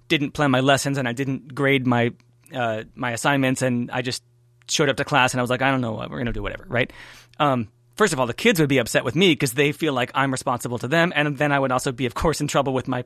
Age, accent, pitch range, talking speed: 30-49, American, 125-150 Hz, 290 wpm